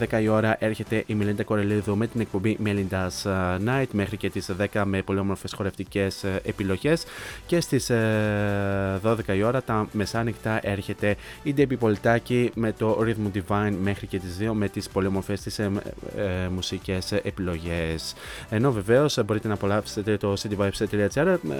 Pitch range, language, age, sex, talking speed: 100-115 Hz, Greek, 20-39, male, 150 wpm